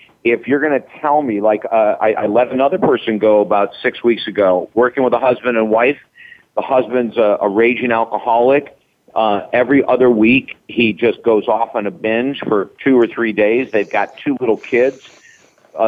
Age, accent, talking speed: 50-69, American, 195 wpm